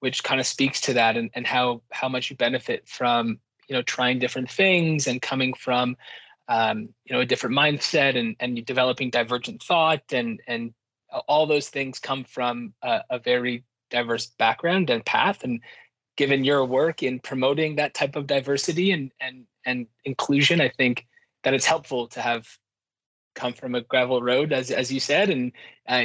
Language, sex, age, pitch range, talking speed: English, male, 20-39, 120-140 Hz, 180 wpm